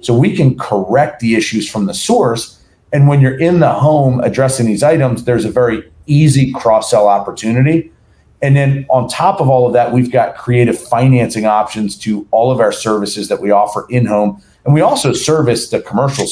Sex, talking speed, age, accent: male, 190 wpm, 40-59, American